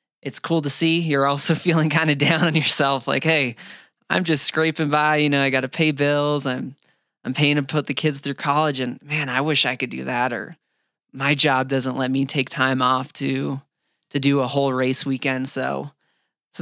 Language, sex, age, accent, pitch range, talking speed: English, male, 20-39, American, 135-150 Hz, 220 wpm